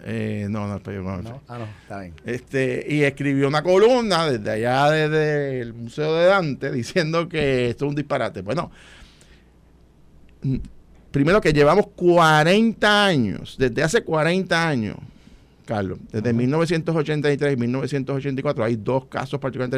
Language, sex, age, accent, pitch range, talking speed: Spanish, male, 50-69, Venezuelan, 125-165 Hz, 130 wpm